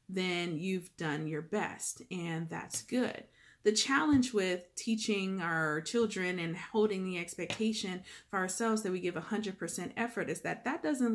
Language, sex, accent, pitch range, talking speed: English, female, American, 180-225 Hz, 155 wpm